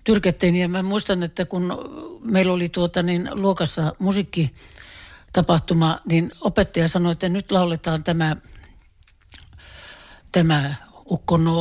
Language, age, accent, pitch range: Finnish, 60-79, native, 160-185 Hz